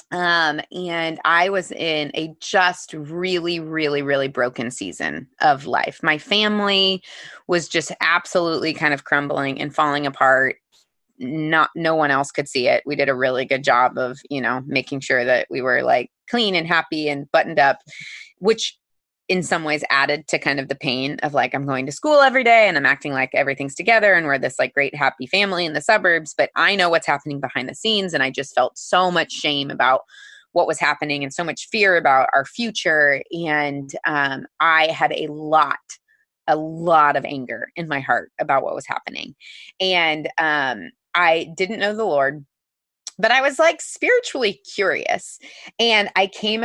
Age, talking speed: 20-39, 190 wpm